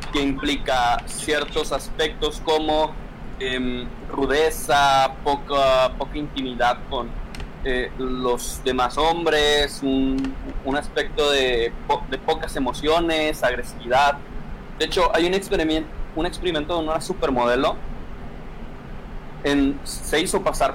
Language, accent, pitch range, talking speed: Spanish, Mexican, 130-155 Hz, 105 wpm